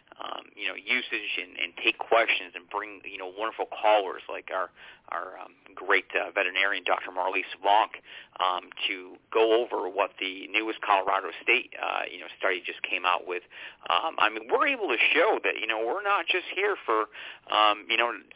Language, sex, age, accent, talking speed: English, male, 40-59, American, 195 wpm